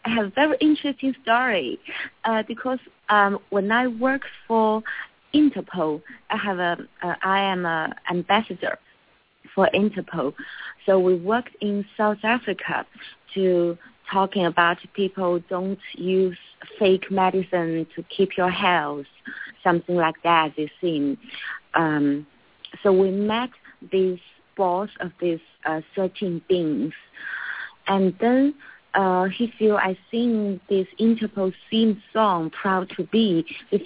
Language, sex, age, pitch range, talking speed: English, female, 30-49, 180-220 Hz, 130 wpm